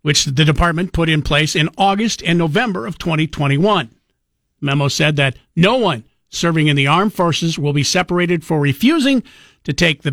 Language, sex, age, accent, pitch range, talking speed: English, male, 50-69, American, 145-175 Hz, 180 wpm